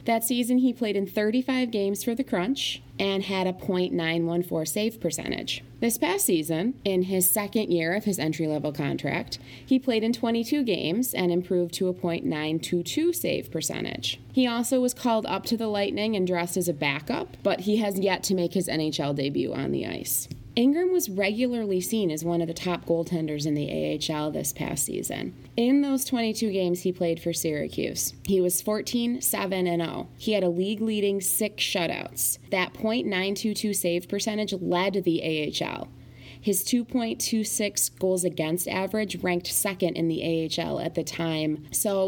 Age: 20-39